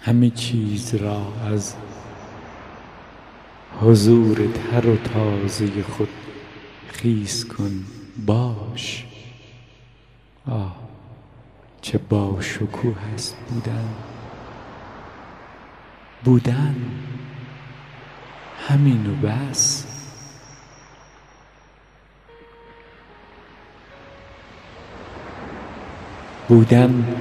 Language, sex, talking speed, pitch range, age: Persian, male, 50 wpm, 105-125 Hz, 50-69